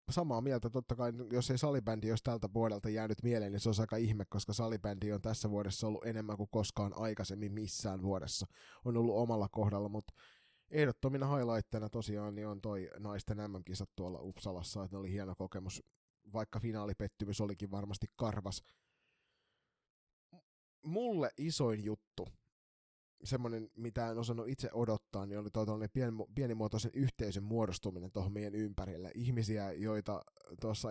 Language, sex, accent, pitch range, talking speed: Finnish, male, native, 100-115 Hz, 145 wpm